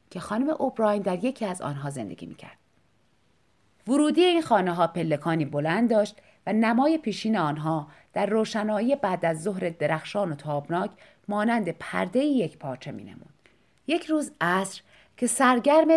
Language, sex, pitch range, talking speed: Persian, female, 160-260 Hz, 145 wpm